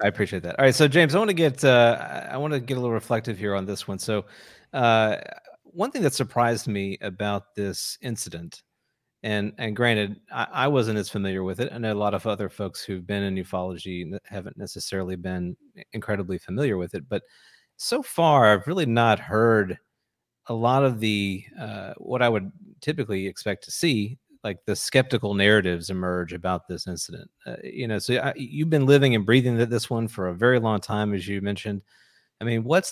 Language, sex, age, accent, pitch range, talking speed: English, male, 40-59, American, 100-130 Hz, 205 wpm